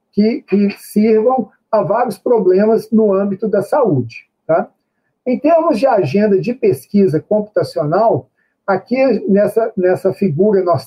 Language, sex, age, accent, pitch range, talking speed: Portuguese, male, 50-69, Brazilian, 185-230 Hz, 120 wpm